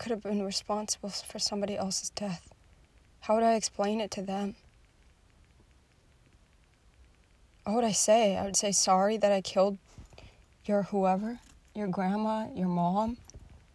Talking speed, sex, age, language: 140 wpm, female, 20-39, English